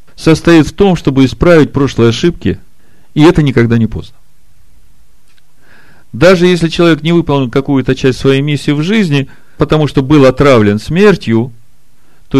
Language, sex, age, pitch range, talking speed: Russian, male, 40-59, 120-155 Hz, 140 wpm